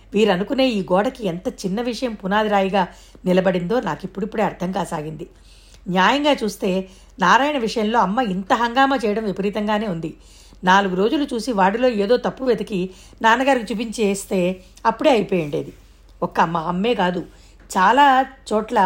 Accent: native